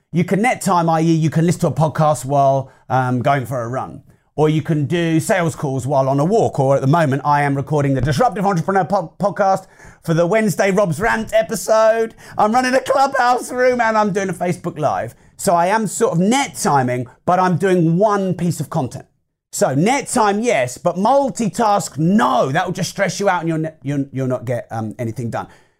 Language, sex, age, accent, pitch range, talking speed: English, male, 40-59, British, 145-195 Hz, 205 wpm